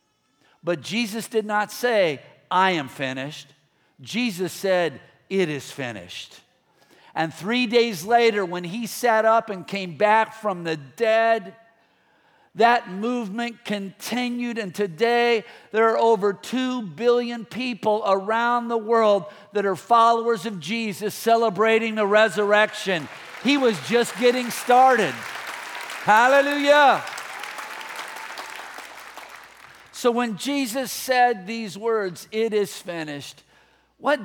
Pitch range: 190-240 Hz